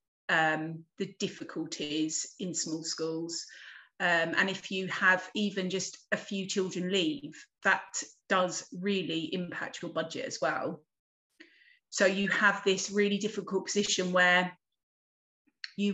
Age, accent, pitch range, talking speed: 30-49, British, 180-205 Hz, 130 wpm